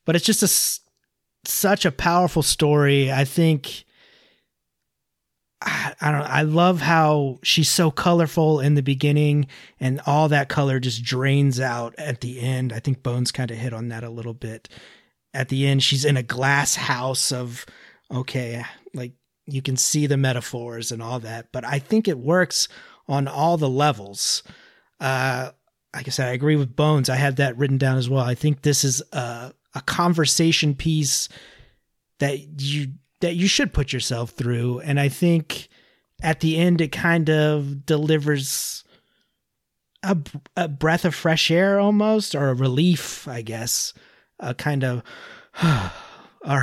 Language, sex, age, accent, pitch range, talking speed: English, male, 30-49, American, 125-155 Hz, 165 wpm